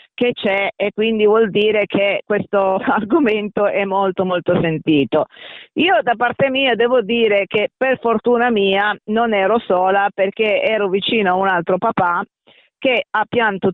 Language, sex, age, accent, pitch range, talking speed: Italian, female, 40-59, native, 200-245 Hz, 155 wpm